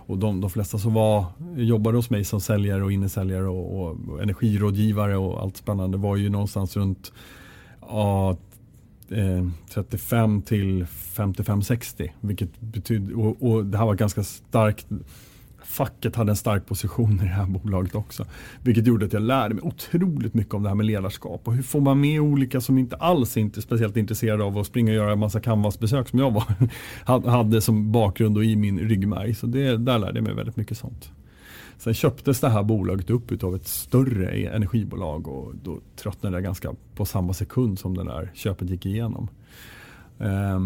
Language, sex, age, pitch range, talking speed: Swedish, male, 30-49, 100-115 Hz, 185 wpm